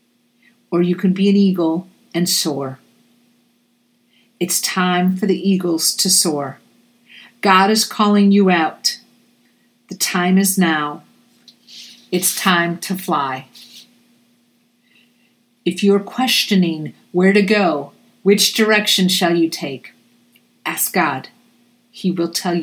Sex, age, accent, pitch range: female, 50-69, American, 180-240 Hz